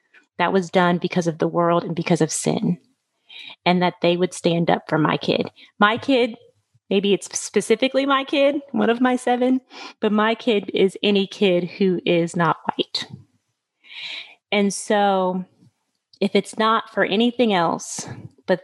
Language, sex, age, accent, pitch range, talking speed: English, female, 30-49, American, 180-225 Hz, 160 wpm